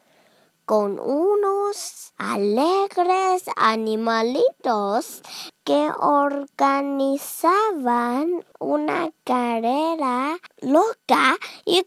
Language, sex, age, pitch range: Chinese, male, 20-39, 225-345 Hz